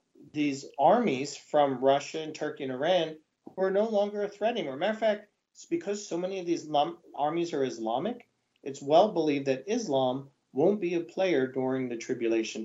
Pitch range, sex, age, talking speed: 135-180 Hz, male, 40-59, 180 wpm